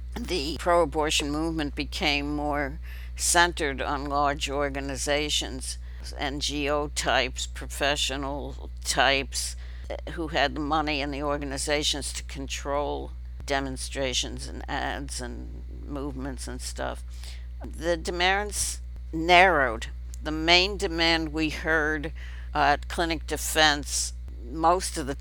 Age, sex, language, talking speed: 60-79, female, English, 100 wpm